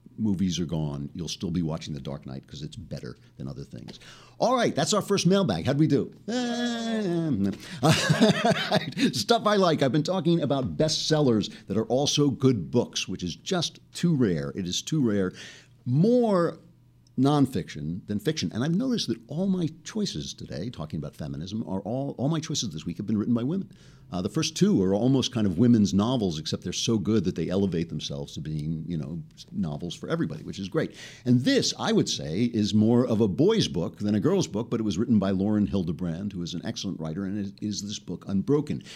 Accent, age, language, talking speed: American, 50-69, English, 210 wpm